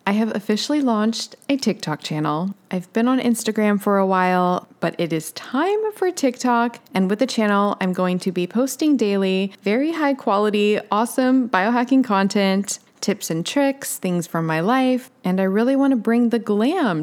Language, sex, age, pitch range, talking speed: English, female, 20-39, 185-235 Hz, 180 wpm